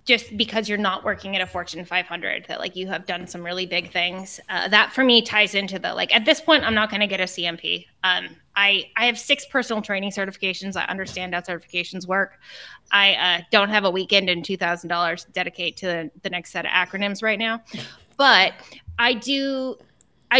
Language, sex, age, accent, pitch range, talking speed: English, female, 20-39, American, 175-220 Hz, 205 wpm